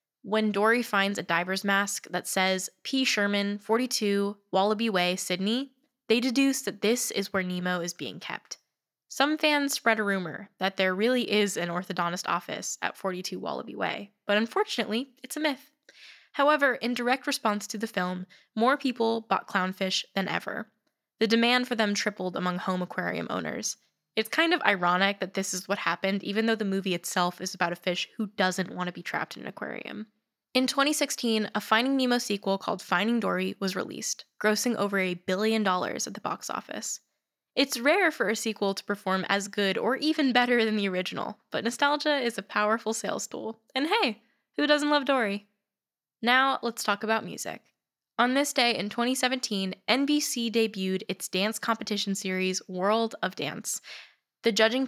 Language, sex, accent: English, female, American